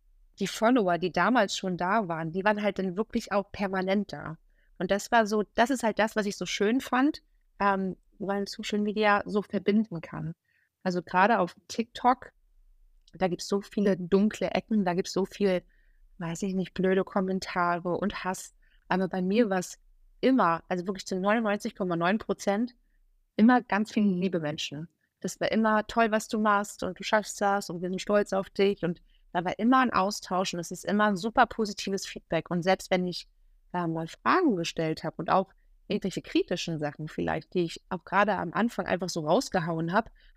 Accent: German